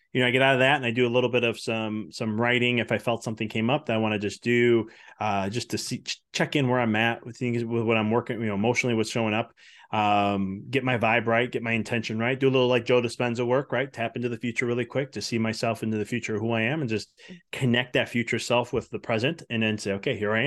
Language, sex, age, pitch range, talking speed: English, male, 20-39, 110-125 Hz, 285 wpm